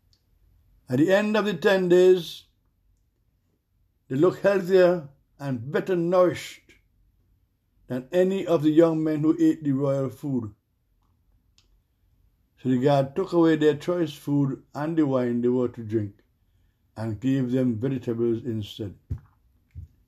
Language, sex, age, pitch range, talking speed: English, male, 60-79, 100-155 Hz, 130 wpm